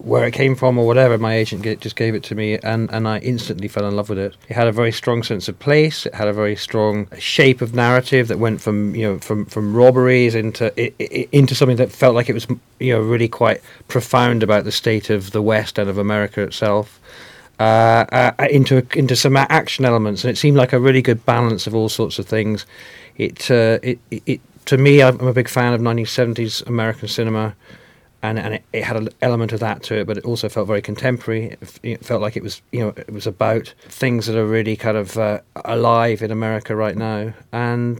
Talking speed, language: 230 wpm, English